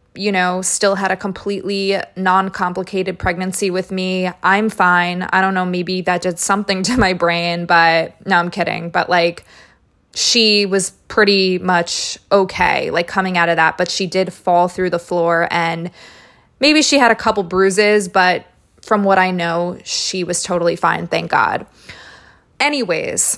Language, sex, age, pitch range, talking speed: English, female, 20-39, 180-210 Hz, 165 wpm